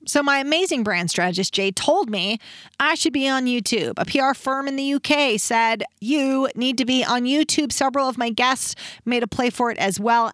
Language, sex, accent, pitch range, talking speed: English, female, American, 215-285 Hz, 215 wpm